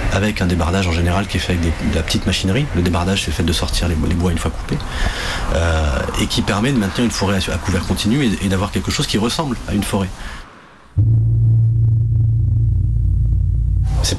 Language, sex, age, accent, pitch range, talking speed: French, male, 30-49, French, 95-115 Hz, 205 wpm